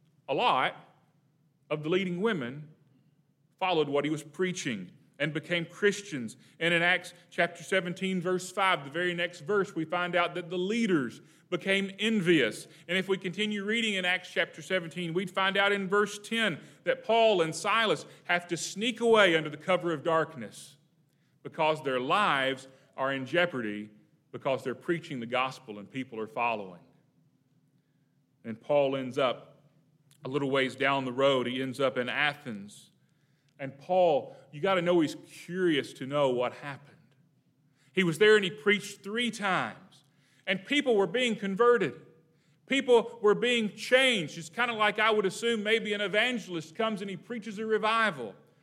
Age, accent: 40-59, American